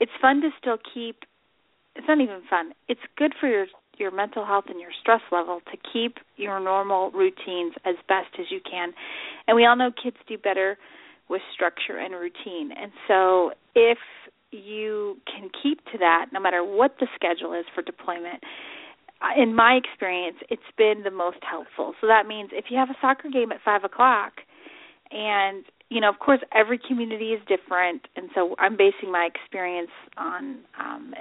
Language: English